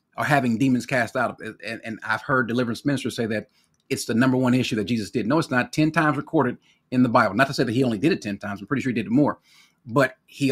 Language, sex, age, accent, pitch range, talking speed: English, male, 40-59, American, 115-145 Hz, 275 wpm